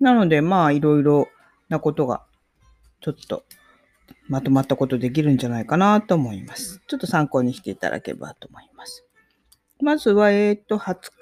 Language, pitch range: Japanese, 135-215 Hz